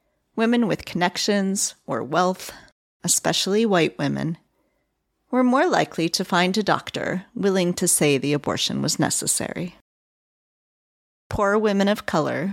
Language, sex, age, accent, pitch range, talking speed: English, female, 40-59, American, 170-220 Hz, 125 wpm